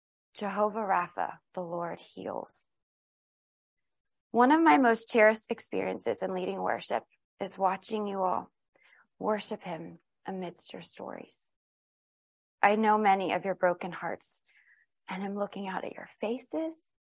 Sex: female